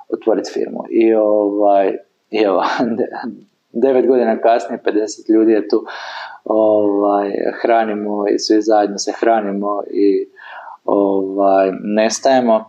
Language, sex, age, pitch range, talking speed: Croatian, male, 20-39, 100-125 Hz, 110 wpm